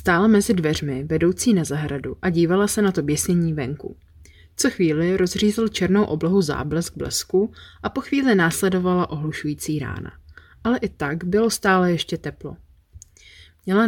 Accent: native